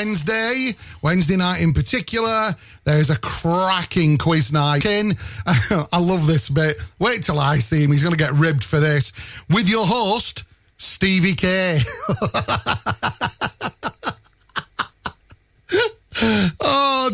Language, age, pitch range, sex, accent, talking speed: English, 40-59, 155-205 Hz, male, British, 115 wpm